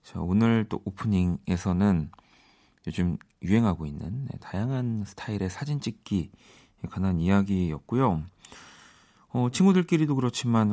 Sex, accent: male, native